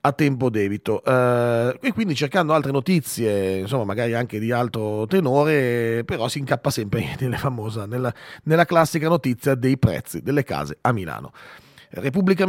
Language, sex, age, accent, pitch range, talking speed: Italian, male, 30-49, native, 120-155 Hz, 160 wpm